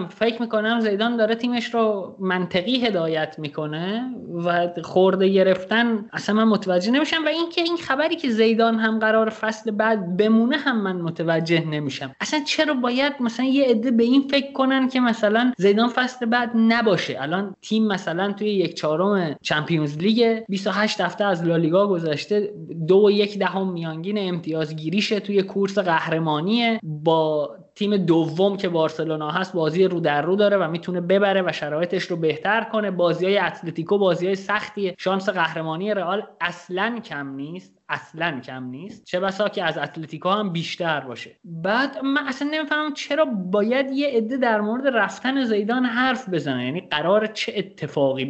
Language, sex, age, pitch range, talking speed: Persian, male, 20-39, 155-220 Hz, 165 wpm